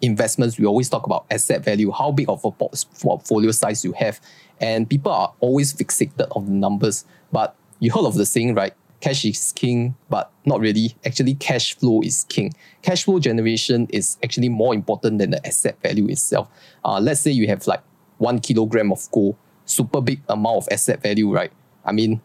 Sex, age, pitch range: male, 20-39, 110-135 Hz